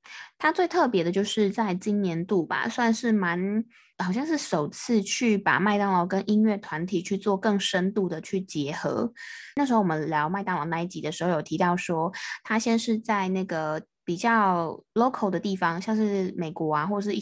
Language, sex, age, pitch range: Chinese, female, 20-39, 170-210 Hz